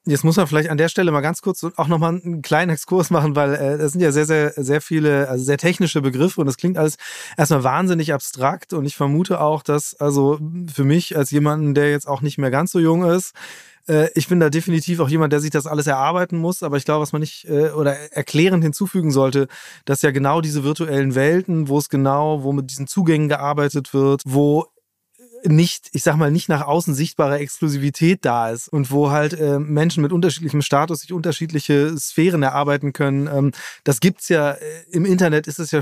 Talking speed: 210 wpm